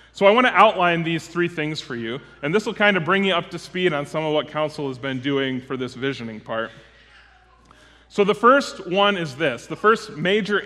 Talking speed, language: 230 wpm, English